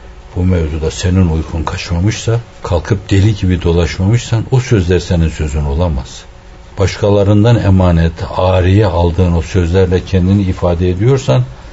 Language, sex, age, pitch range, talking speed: Turkish, male, 60-79, 85-105 Hz, 120 wpm